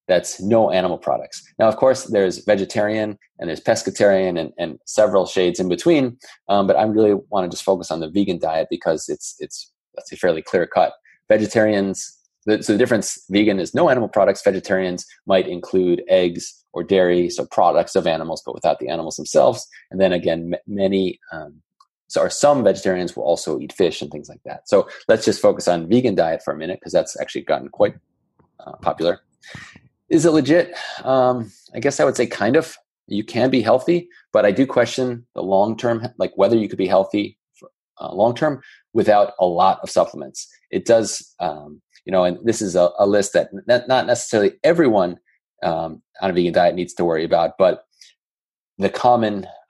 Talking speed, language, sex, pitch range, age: 190 wpm, English, male, 90-120 Hz, 30-49